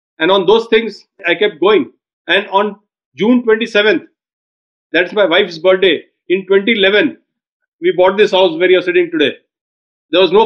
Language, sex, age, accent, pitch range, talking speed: Hindi, male, 40-59, native, 200-270 Hz, 165 wpm